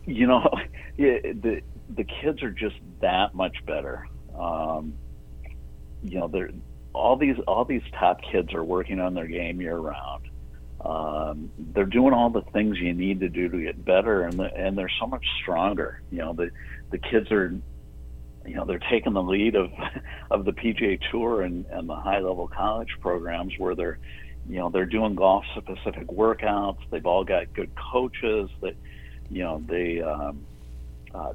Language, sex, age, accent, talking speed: English, male, 50-69, American, 175 wpm